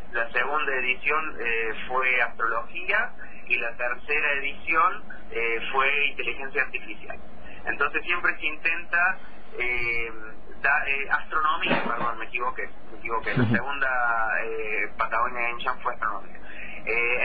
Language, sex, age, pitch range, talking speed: Spanish, male, 30-49, 130-175 Hz, 120 wpm